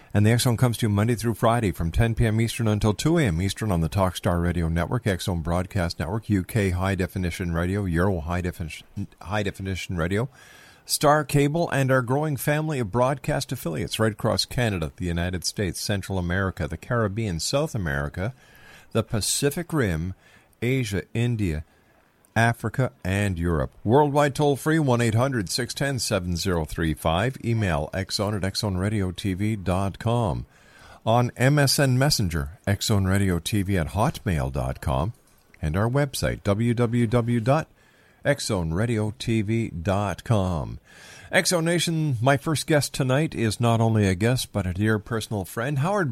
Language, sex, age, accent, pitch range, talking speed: English, male, 50-69, American, 95-130 Hz, 130 wpm